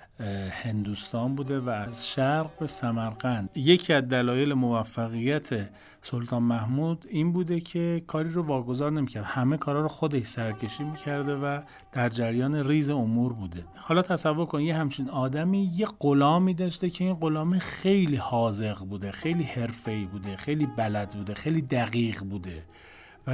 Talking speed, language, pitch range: 145 wpm, Persian, 115-160 Hz